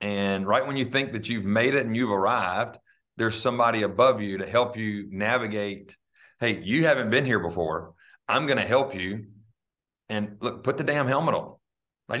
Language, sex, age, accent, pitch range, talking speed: English, male, 30-49, American, 100-130 Hz, 190 wpm